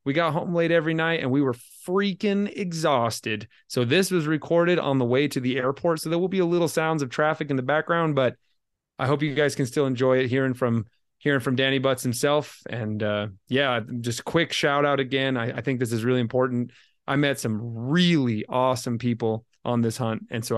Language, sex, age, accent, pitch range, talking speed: English, male, 30-49, American, 120-145 Hz, 220 wpm